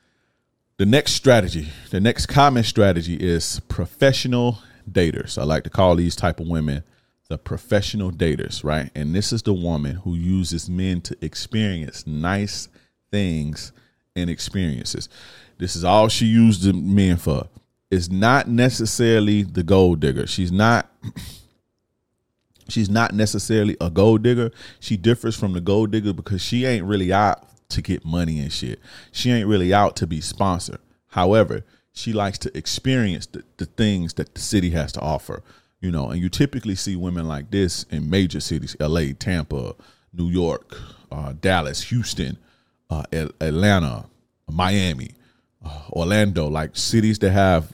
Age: 30-49